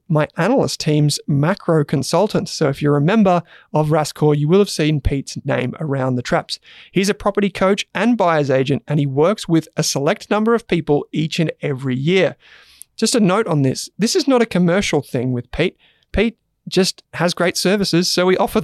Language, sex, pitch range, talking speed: English, male, 145-190 Hz, 200 wpm